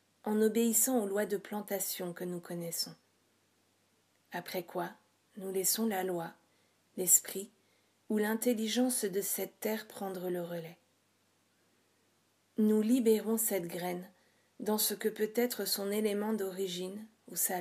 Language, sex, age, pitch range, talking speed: French, female, 40-59, 185-220 Hz, 130 wpm